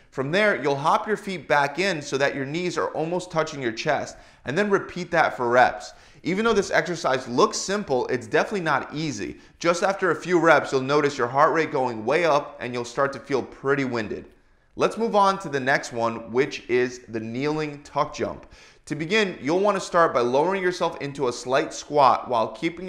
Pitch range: 130-180 Hz